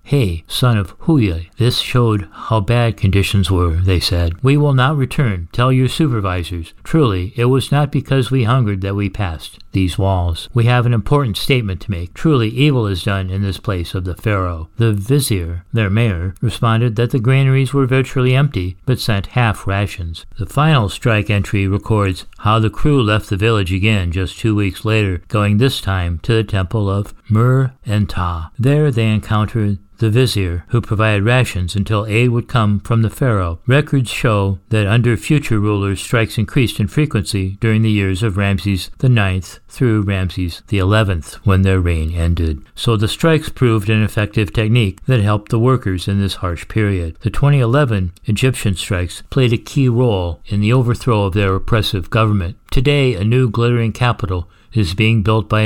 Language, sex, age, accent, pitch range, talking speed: English, male, 60-79, American, 95-120 Hz, 180 wpm